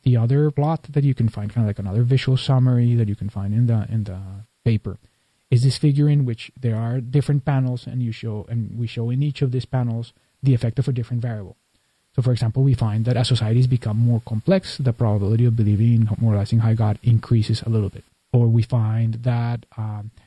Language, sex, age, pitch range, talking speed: English, male, 30-49, 110-130 Hz, 225 wpm